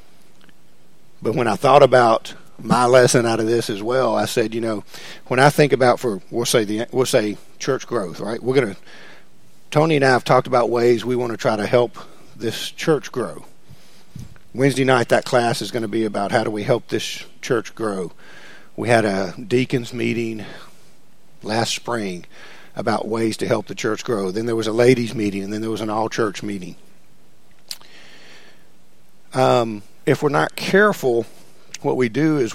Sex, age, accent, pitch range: male, 50-69, American, 115-140 Hz